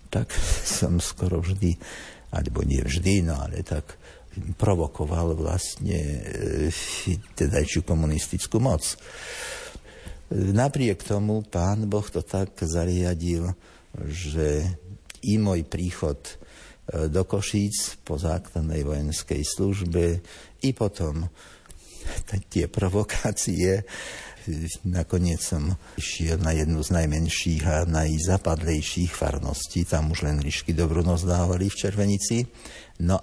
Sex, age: male, 60-79